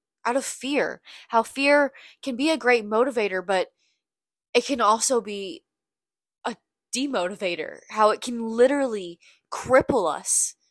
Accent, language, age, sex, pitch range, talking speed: American, English, 20-39, female, 175-230 Hz, 130 wpm